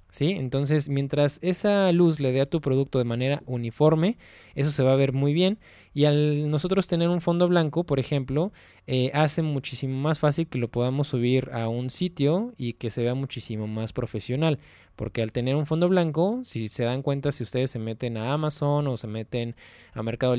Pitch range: 125-155 Hz